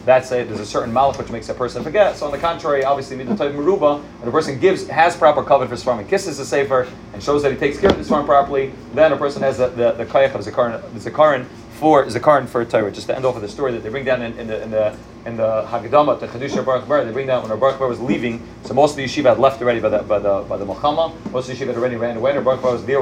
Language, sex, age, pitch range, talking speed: English, male, 30-49, 120-145 Hz, 315 wpm